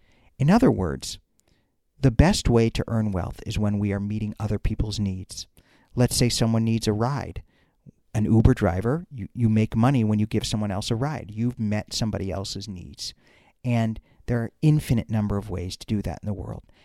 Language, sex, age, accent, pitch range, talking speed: English, male, 50-69, American, 100-120 Hz, 195 wpm